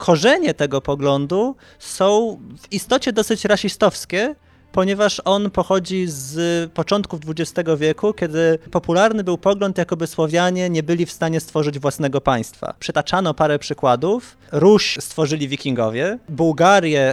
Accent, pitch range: native, 135-180 Hz